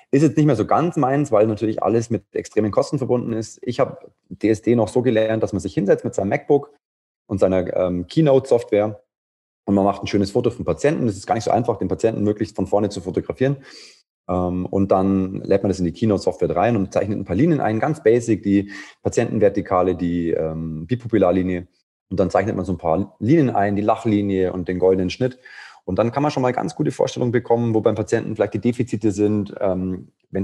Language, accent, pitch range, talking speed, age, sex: German, German, 90-110 Hz, 215 wpm, 30-49, male